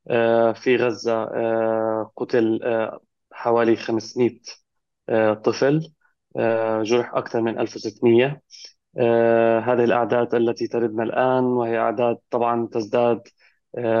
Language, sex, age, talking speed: Arabic, male, 20-39, 80 wpm